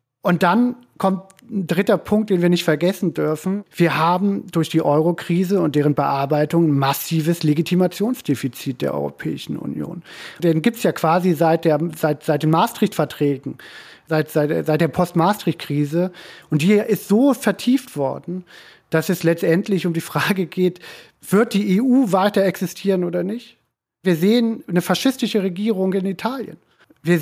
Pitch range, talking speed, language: 160-205 Hz, 150 wpm, German